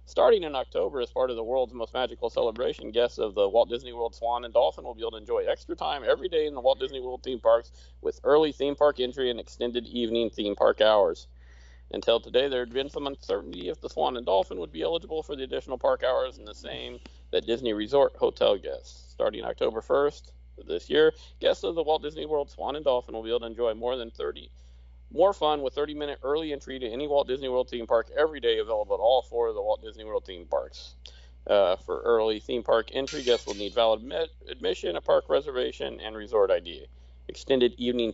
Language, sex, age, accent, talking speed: English, male, 40-59, American, 225 wpm